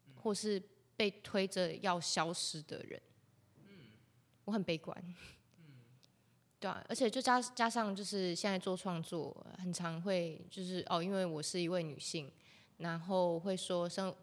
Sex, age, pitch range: female, 20-39, 160-195 Hz